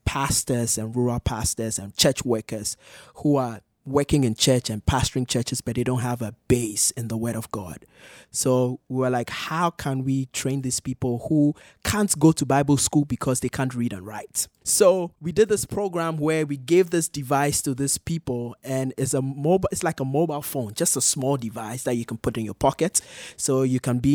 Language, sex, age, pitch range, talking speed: English, male, 20-39, 115-140 Hz, 210 wpm